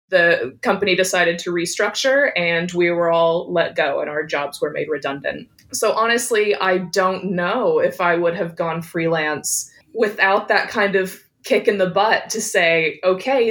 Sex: female